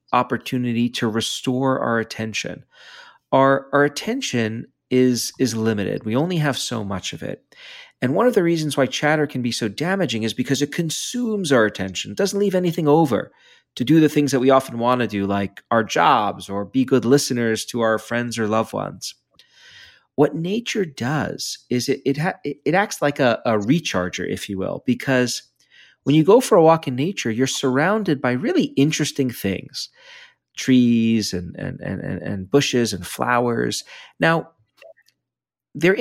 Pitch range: 110-160 Hz